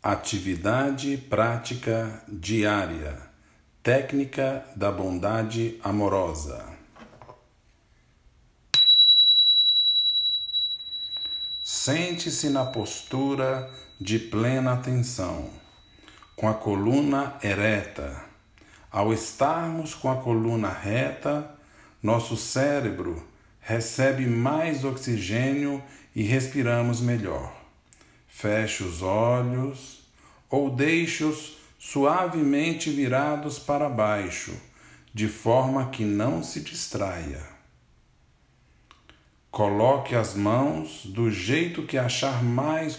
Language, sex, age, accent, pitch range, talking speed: Portuguese, male, 50-69, Brazilian, 100-135 Hz, 75 wpm